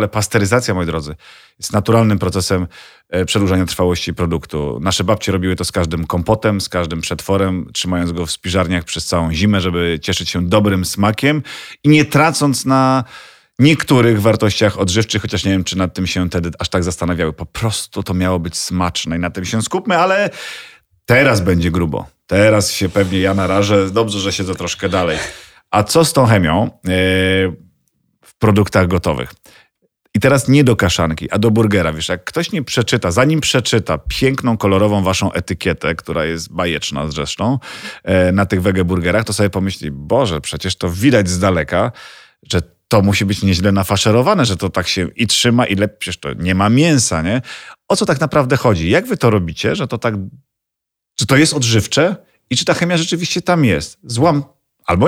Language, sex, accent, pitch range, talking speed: Polish, male, native, 90-115 Hz, 180 wpm